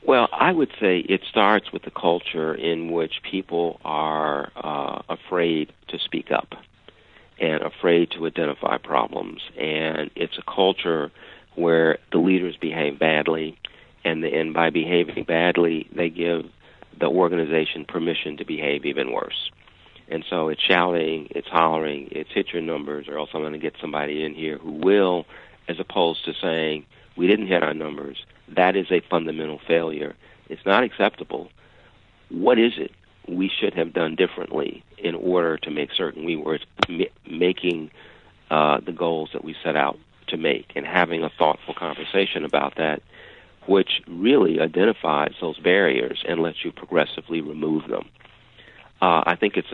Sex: male